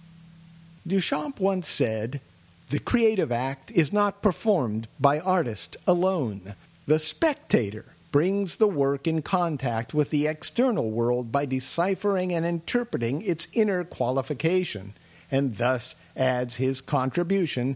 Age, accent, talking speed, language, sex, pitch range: 50-69, American, 120 wpm, English, male, 130-185 Hz